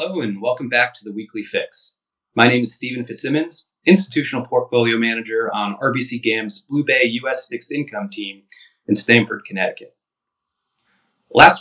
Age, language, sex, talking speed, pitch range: 30-49, English, male, 150 wpm, 105-145 Hz